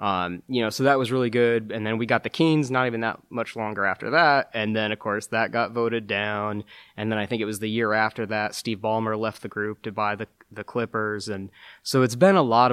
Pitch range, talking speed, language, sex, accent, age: 105-120 Hz, 260 wpm, English, male, American, 20-39